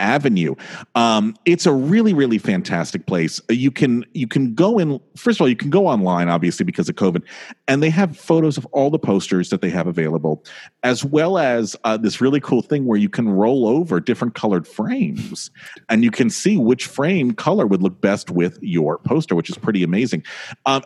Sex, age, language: male, 40-59, English